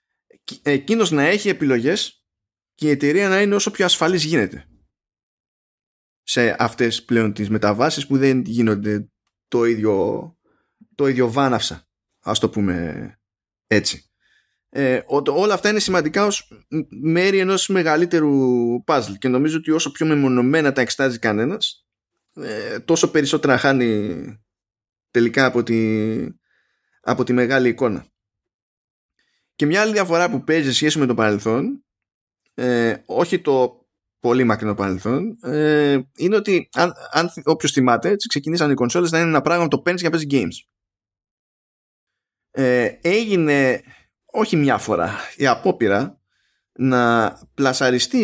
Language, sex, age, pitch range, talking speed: Greek, male, 20-39, 115-160 Hz, 130 wpm